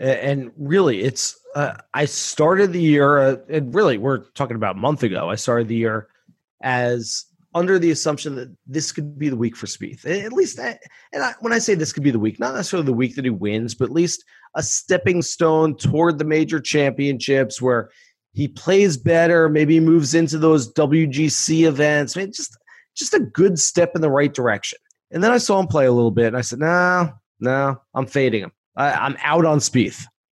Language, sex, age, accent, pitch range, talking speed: English, male, 30-49, American, 130-175 Hz, 210 wpm